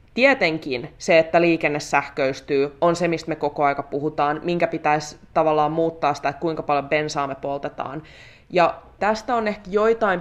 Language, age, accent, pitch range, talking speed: Finnish, 20-39, native, 150-180 Hz, 165 wpm